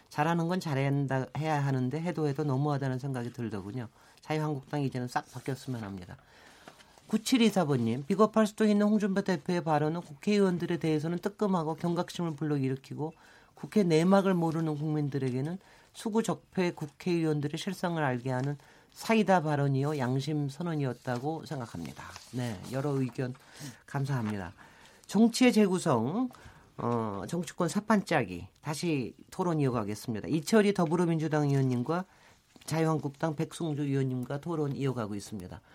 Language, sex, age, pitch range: Korean, male, 40-59, 135-185 Hz